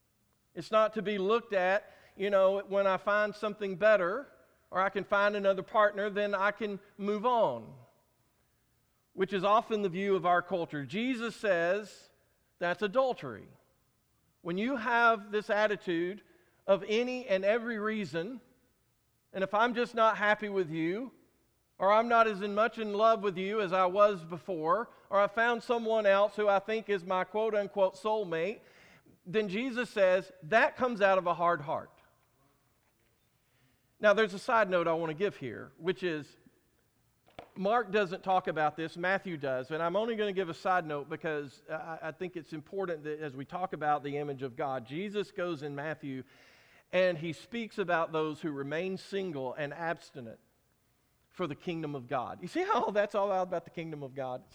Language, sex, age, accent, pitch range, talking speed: English, male, 50-69, American, 160-210 Hz, 180 wpm